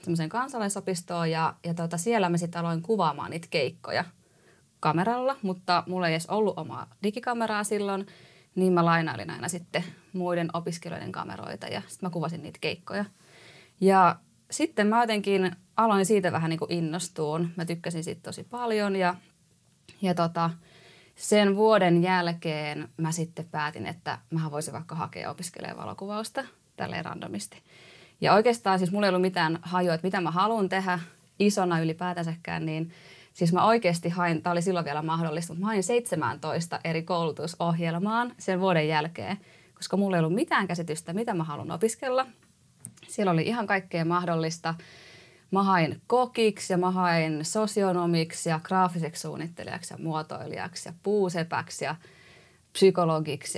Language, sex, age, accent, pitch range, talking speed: Finnish, female, 20-39, native, 165-195 Hz, 145 wpm